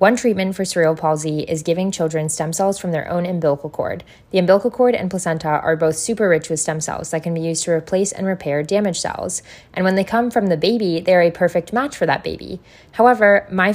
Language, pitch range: English, 155-195 Hz